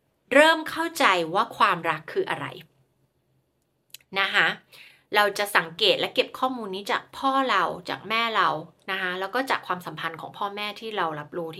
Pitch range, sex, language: 175-260 Hz, female, Thai